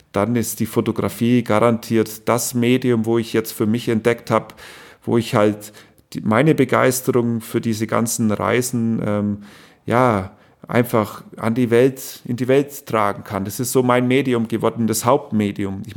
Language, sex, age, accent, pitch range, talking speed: German, male, 40-59, German, 110-135 Hz, 160 wpm